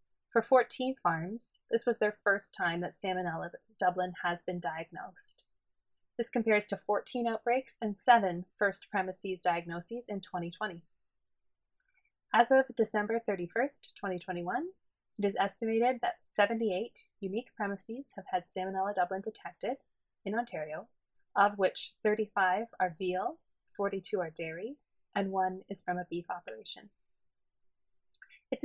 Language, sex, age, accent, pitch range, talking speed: English, female, 20-39, American, 185-235 Hz, 130 wpm